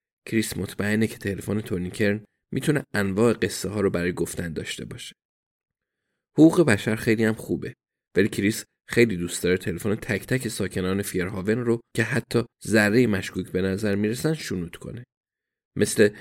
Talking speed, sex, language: 150 wpm, male, Persian